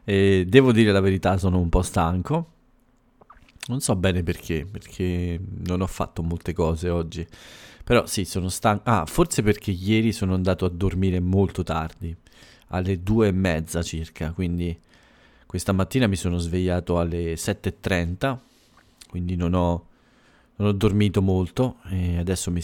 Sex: male